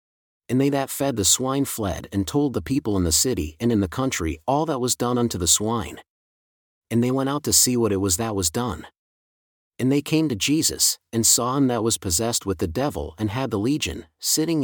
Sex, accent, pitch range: male, American, 95-130 Hz